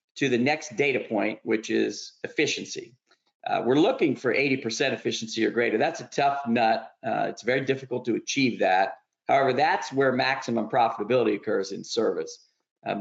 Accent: American